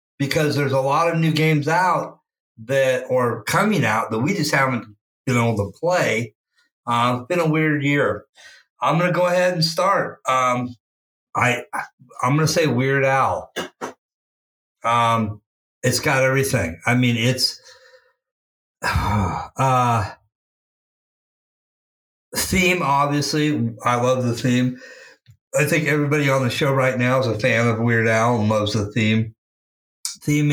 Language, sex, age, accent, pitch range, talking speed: English, male, 50-69, American, 115-140 Hz, 150 wpm